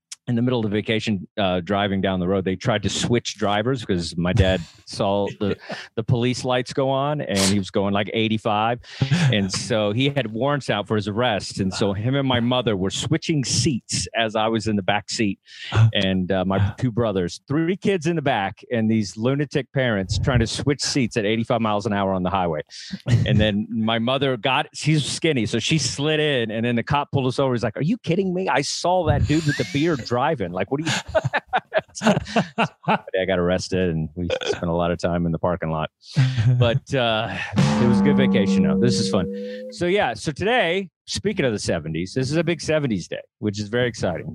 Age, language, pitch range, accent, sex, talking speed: 40-59, English, 100-130 Hz, American, male, 220 wpm